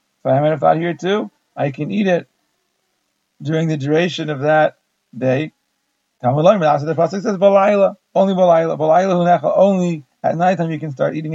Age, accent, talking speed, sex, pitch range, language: 40-59, American, 170 wpm, male, 150-175 Hz, English